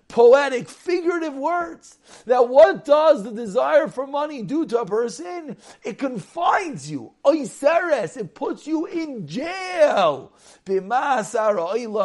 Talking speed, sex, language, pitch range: 110 wpm, male, English, 195-280 Hz